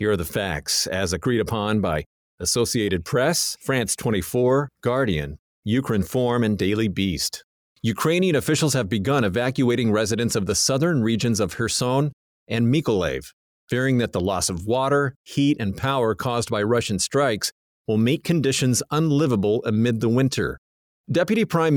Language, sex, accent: English, male, American